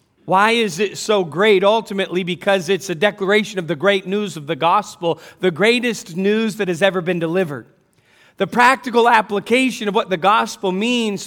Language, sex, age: English, male, 40-59